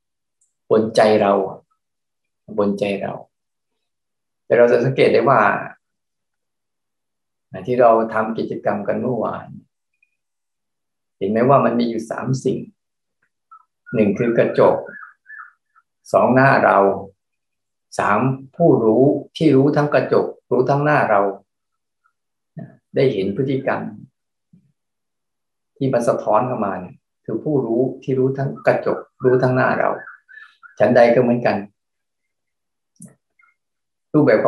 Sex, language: male, Thai